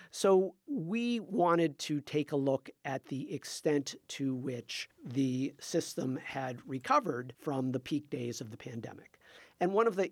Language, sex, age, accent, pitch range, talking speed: English, male, 50-69, American, 130-170 Hz, 160 wpm